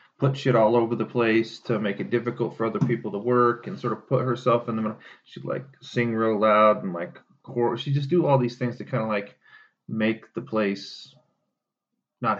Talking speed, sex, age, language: 220 wpm, male, 30-49, English